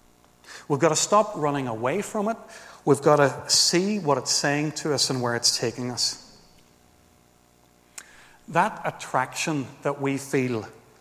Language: English